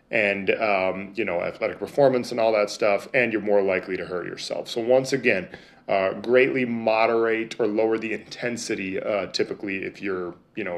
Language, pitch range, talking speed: English, 105-125 Hz, 190 wpm